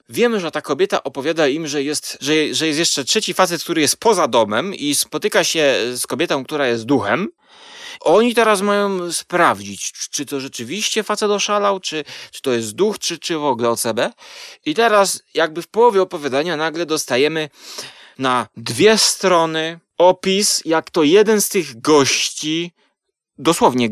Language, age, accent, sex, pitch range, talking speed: Polish, 30-49, native, male, 150-190 Hz, 155 wpm